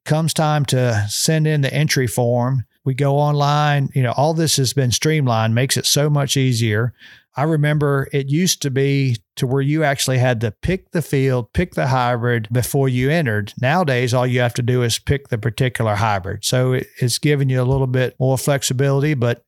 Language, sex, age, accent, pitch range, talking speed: English, male, 50-69, American, 125-150 Hz, 200 wpm